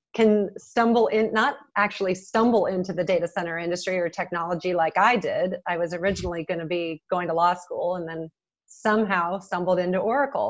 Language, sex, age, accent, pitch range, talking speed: English, female, 30-49, American, 180-210 Hz, 185 wpm